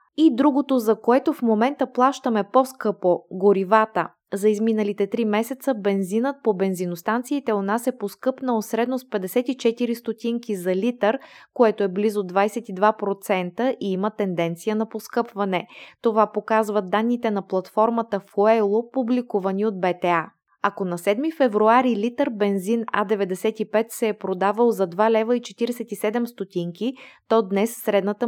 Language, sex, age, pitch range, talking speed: Bulgarian, female, 20-39, 200-240 Hz, 125 wpm